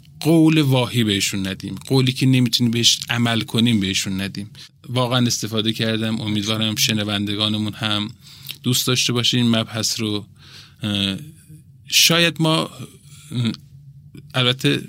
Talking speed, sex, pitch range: 110 wpm, male, 110-135 Hz